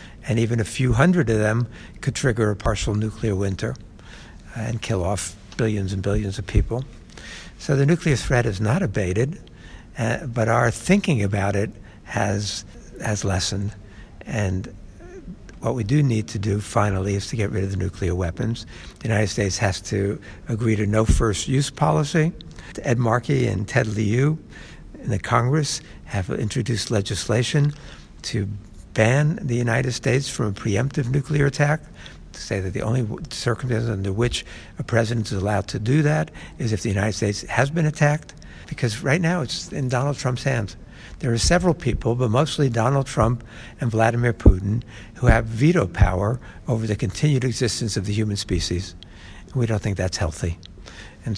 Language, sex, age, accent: English, male, 60-79, American